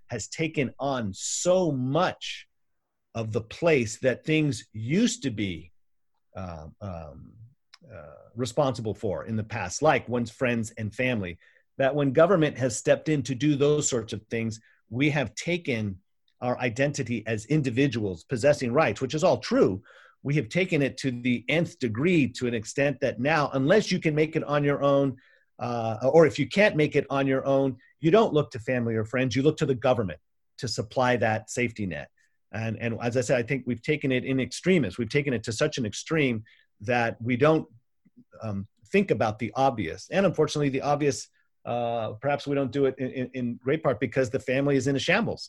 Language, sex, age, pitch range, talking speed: English, male, 40-59, 115-145 Hz, 195 wpm